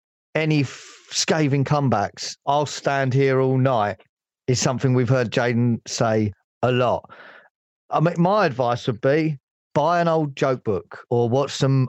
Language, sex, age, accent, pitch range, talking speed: English, male, 40-59, British, 125-150 Hz, 155 wpm